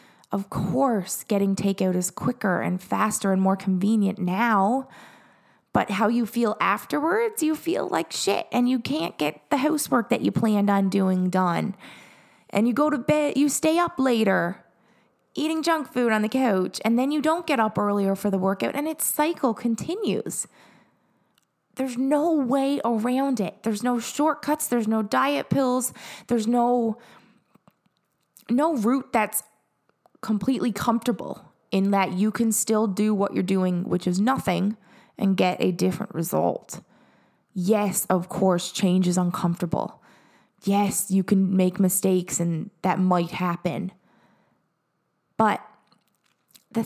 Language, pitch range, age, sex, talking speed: English, 190-245 Hz, 20-39, female, 145 wpm